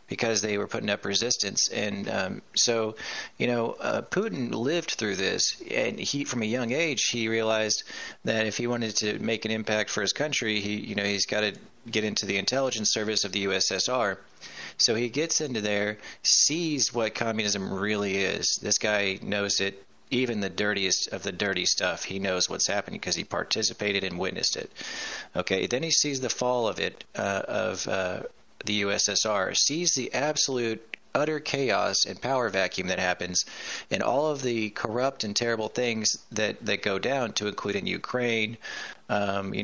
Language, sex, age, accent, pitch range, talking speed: English, male, 30-49, American, 100-125 Hz, 185 wpm